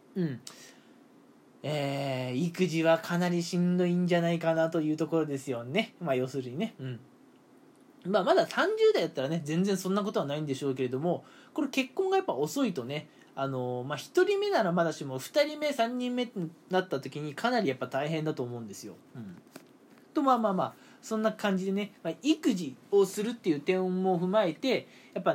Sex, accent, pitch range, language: male, native, 145-235 Hz, Japanese